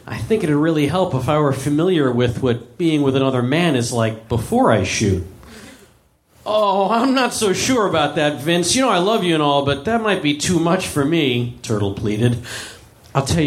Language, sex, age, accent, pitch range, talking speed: English, male, 40-59, American, 130-175 Hz, 210 wpm